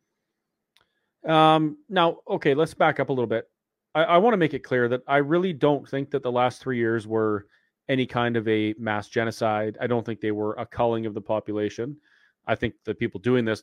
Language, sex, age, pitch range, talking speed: English, male, 30-49, 110-145 Hz, 210 wpm